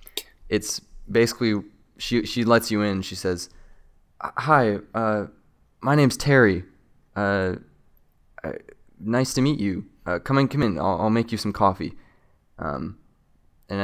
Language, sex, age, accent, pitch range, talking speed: English, male, 20-39, American, 85-105 Hz, 145 wpm